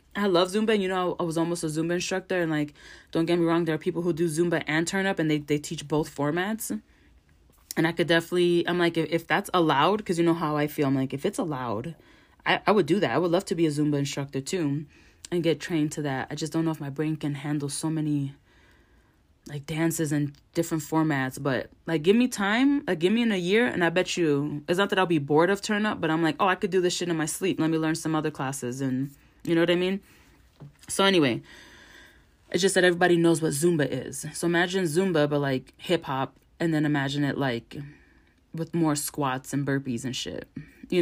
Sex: female